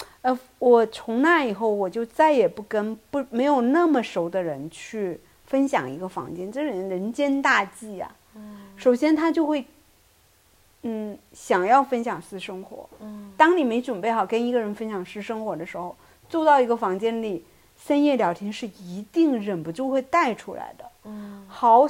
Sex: female